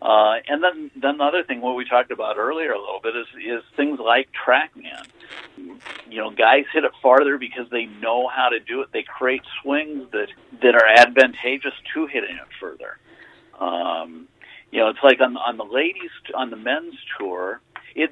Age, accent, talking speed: 50-69, American, 195 wpm